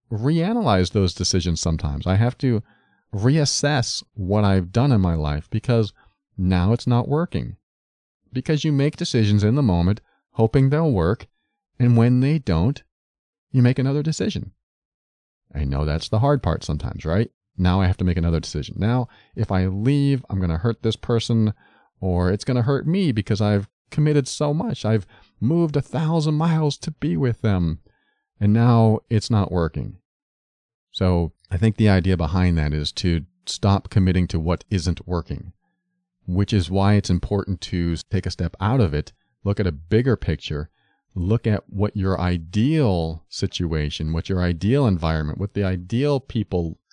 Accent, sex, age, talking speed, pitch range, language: American, male, 40-59, 170 wpm, 90-120 Hz, English